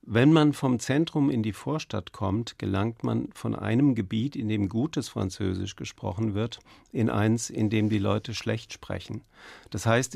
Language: German